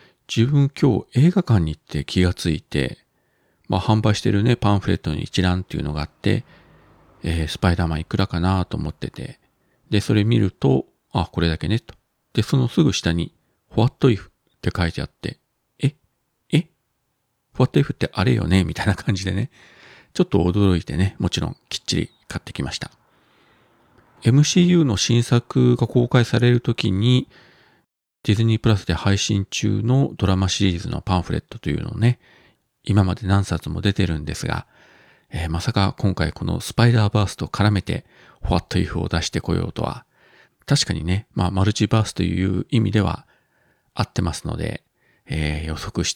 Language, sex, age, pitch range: Japanese, male, 40-59, 90-120 Hz